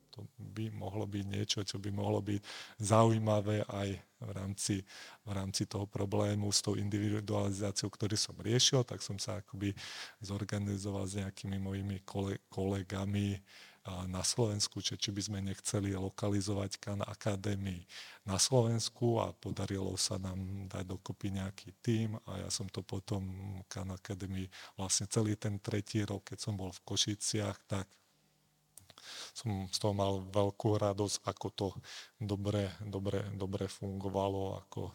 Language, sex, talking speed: Czech, male, 145 wpm